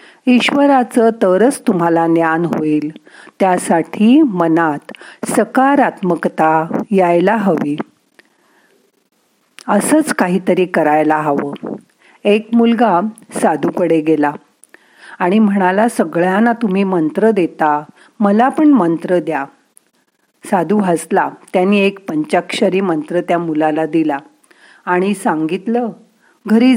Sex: female